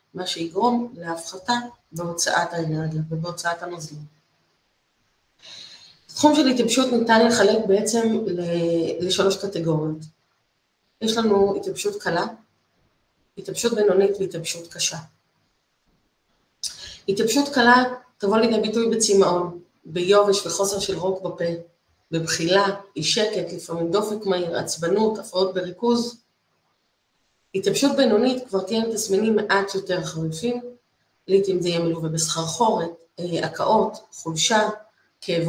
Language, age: Hebrew, 30-49